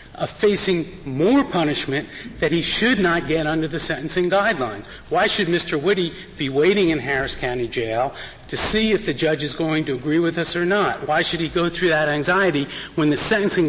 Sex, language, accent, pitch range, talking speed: male, English, American, 155-185 Hz, 200 wpm